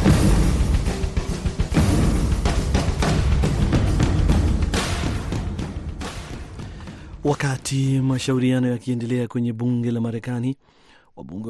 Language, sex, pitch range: Swahili, male, 105-125 Hz